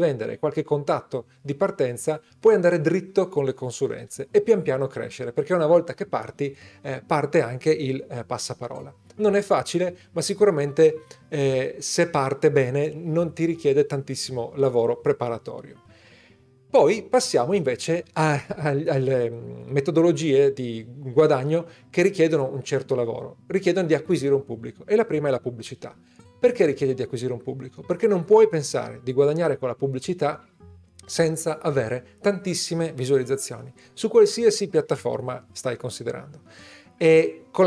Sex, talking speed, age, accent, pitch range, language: male, 145 wpm, 40-59, native, 130-165 Hz, Italian